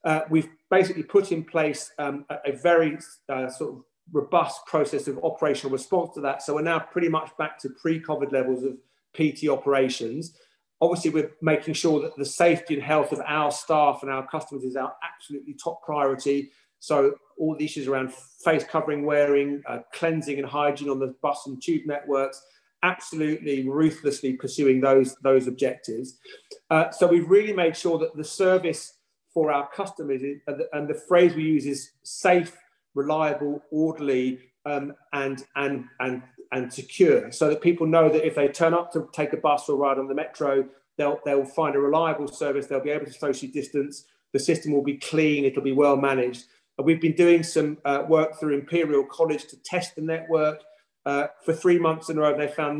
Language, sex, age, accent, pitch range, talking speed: English, male, 30-49, British, 140-160 Hz, 185 wpm